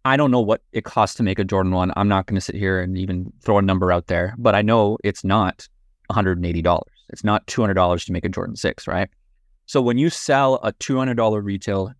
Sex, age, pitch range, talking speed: male, 20-39, 100-135 Hz, 230 wpm